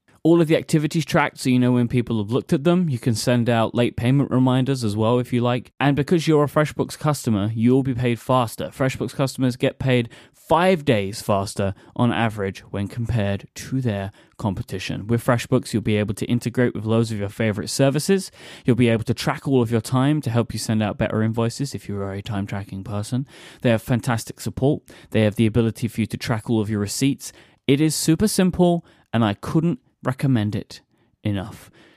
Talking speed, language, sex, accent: 210 wpm, English, male, British